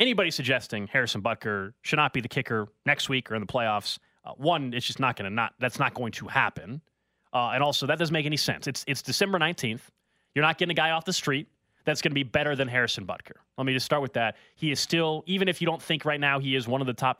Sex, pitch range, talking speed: male, 130-180 Hz, 270 wpm